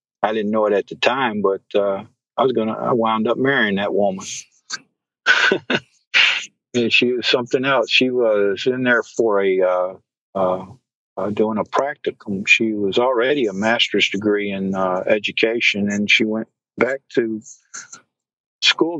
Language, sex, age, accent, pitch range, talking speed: English, male, 50-69, American, 100-110 Hz, 160 wpm